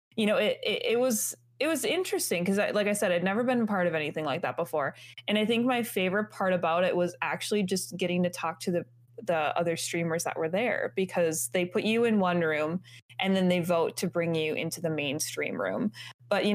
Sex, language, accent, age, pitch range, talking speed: female, English, American, 20-39, 170-210 Hz, 235 wpm